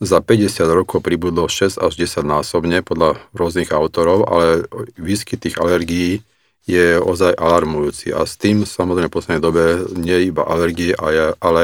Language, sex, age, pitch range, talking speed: Slovak, male, 40-59, 85-95 Hz, 155 wpm